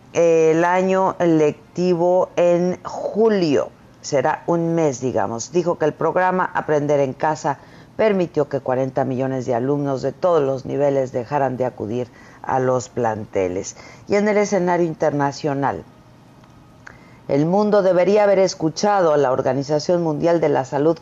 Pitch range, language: 140-175 Hz, Spanish